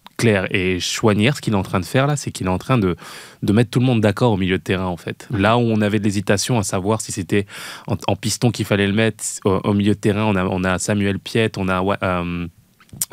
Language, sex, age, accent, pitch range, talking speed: French, male, 20-39, French, 100-120 Hz, 270 wpm